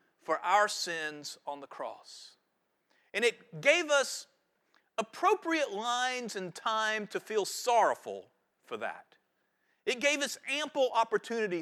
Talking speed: 125 wpm